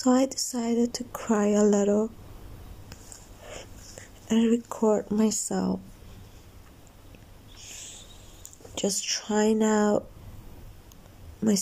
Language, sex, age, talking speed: Persian, female, 20-39, 70 wpm